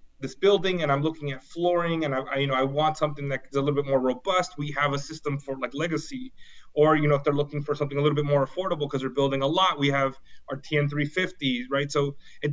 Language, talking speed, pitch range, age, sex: English, 260 wpm, 135-155 Hz, 30-49, male